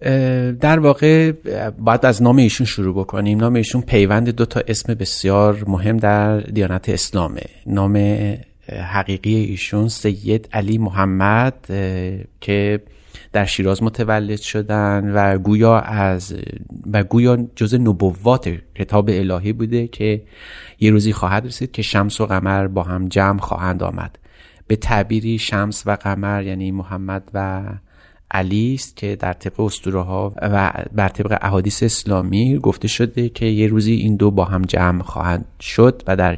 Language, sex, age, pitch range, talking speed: Persian, male, 30-49, 95-110 Hz, 140 wpm